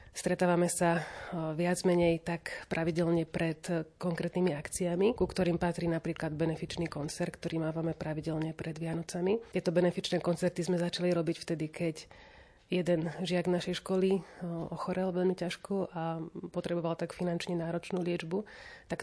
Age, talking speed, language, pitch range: 30-49, 130 wpm, Slovak, 165-185 Hz